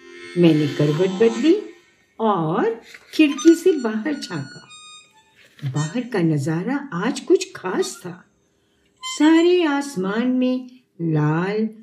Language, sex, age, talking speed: English, female, 60-79, 95 wpm